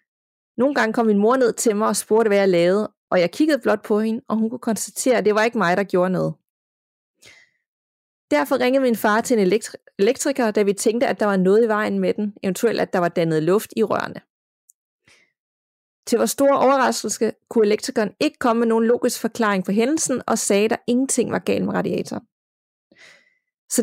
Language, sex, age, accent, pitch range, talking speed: Danish, female, 30-49, native, 195-240 Hz, 205 wpm